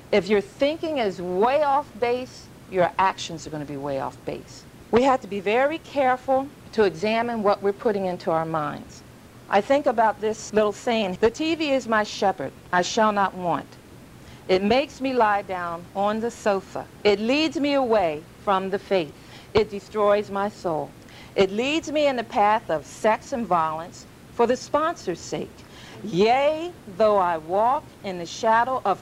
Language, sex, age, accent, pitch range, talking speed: English, female, 50-69, American, 185-255 Hz, 180 wpm